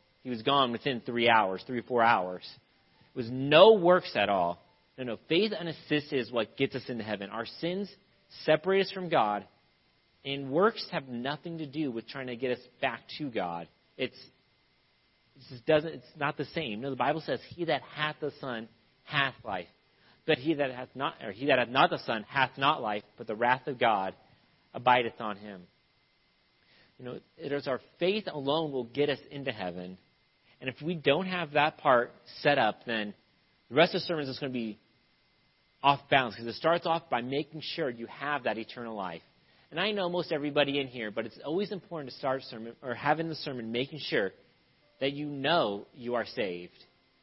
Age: 40-59